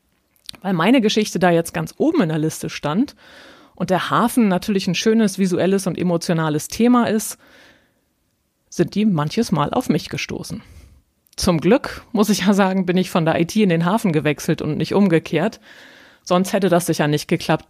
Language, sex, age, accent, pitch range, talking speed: German, female, 30-49, German, 160-215 Hz, 180 wpm